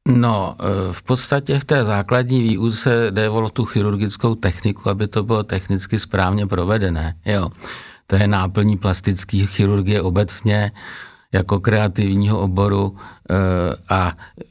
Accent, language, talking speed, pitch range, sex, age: native, Czech, 120 wpm, 95-105 Hz, male, 50-69